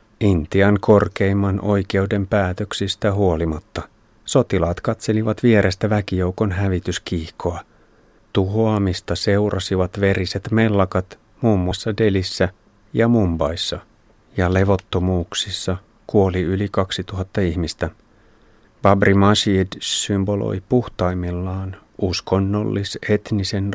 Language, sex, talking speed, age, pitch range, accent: Finnish, male, 75 wpm, 30-49, 95-110 Hz, native